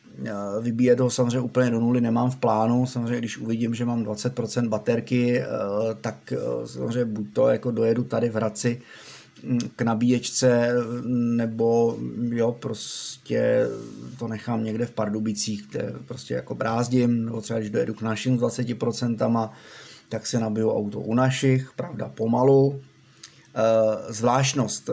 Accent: native